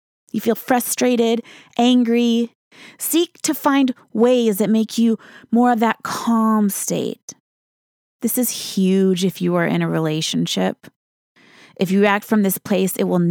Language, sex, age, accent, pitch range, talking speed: English, female, 20-39, American, 195-245 Hz, 150 wpm